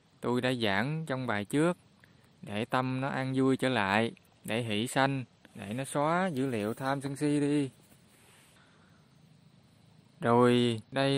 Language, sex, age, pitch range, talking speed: Vietnamese, male, 20-39, 115-150 Hz, 145 wpm